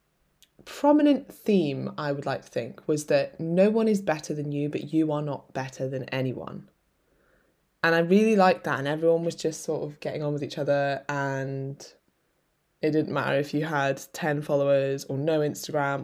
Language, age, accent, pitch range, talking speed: English, 10-29, British, 135-165 Hz, 185 wpm